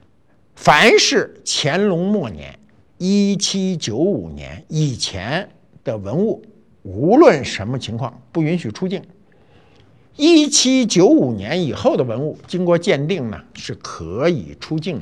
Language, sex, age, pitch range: Chinese, male, 60-79, 115-170 Hz